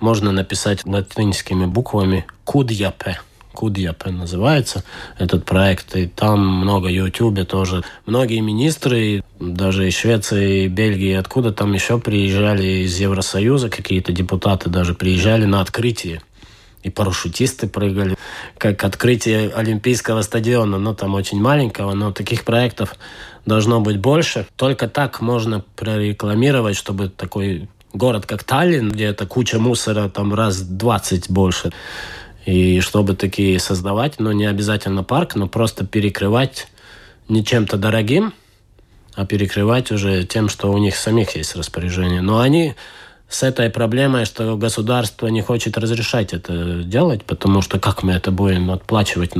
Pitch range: 95-115 Hz